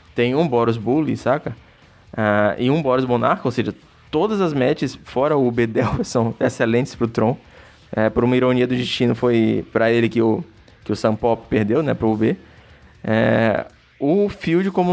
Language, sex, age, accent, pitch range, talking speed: Portuguese, male, 20-39, Brazilian, 120-155 Hz, 175 wpm